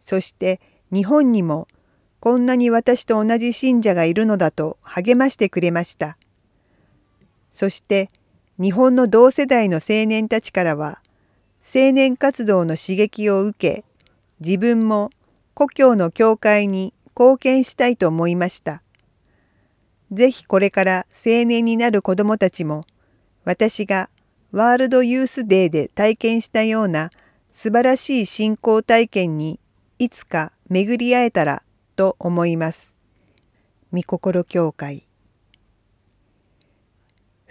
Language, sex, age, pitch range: Japanese, female, 40-59, 150-235 Hz